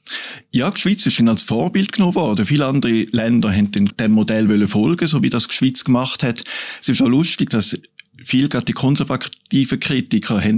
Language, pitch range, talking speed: German, 115-135 Hz, 175 wpm